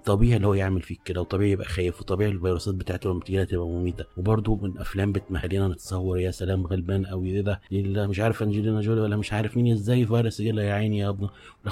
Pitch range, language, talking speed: 90-110 Hz, Arabic, 215 wpm